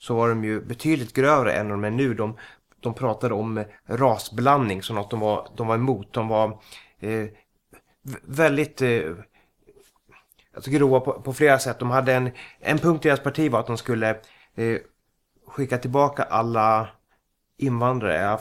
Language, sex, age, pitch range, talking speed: Swedish, male, 30-49, 110-135 Hz, 165 wpm